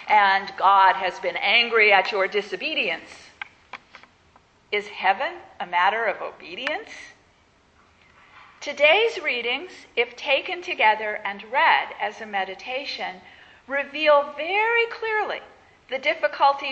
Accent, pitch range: American, 215-300 Hz